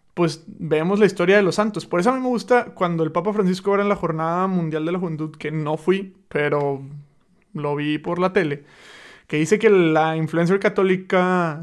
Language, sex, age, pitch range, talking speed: Spanish, male, 20-39, 165-205 Hz, 205 wpm